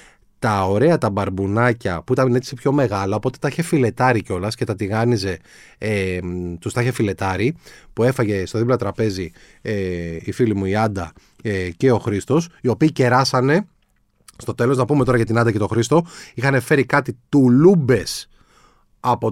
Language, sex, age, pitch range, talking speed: Greek, male, 30-49, 110-155 Hz, 170 wpm